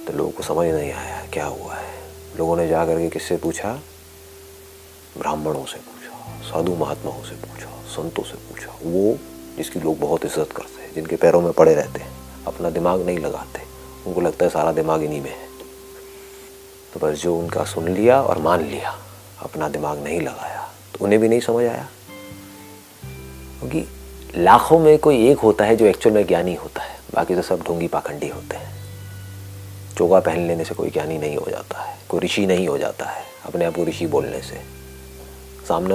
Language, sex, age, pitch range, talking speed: Hindi, male, 40-59, 75-105 Hz, 190 wpm